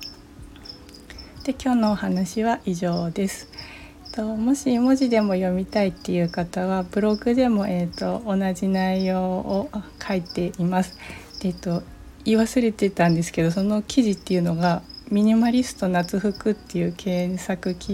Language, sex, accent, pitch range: Japanese, female, native, 180-210 Hz